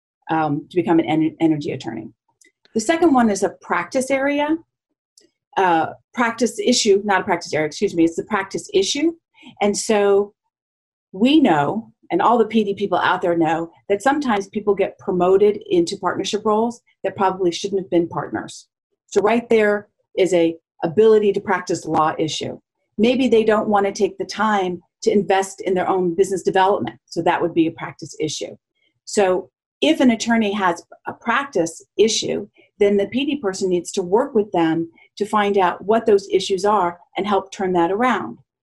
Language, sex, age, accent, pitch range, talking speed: English, female, 40-59, American, 180-230 Hz, 175 wpm